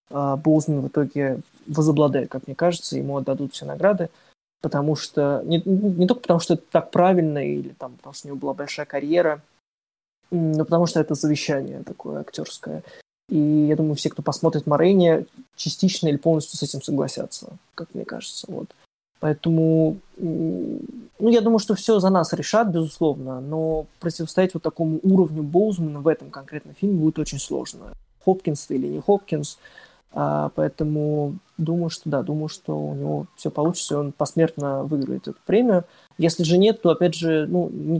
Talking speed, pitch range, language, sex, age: 165 wpm, 145-170 Hz, Ukrainian, male, 20-39